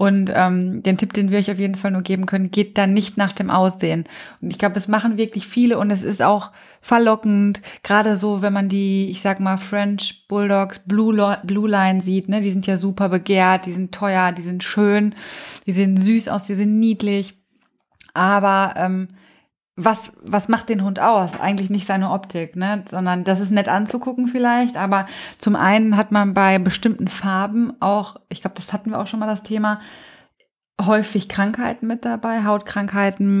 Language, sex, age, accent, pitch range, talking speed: German, female, 20-39, German, 195-215 Hz, 190 wpm